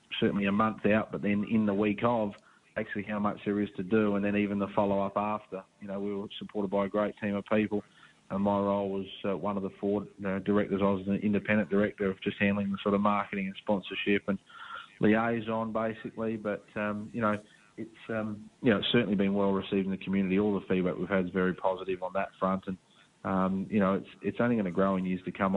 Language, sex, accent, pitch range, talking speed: English, male, Australian, 95-105 Hz, 245 wpm